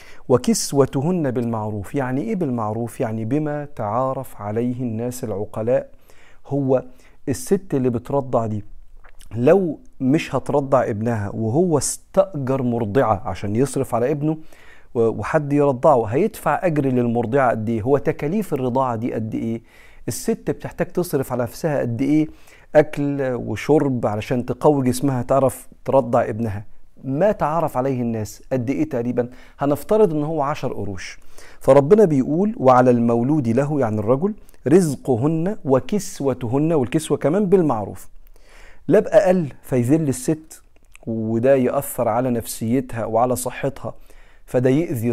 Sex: male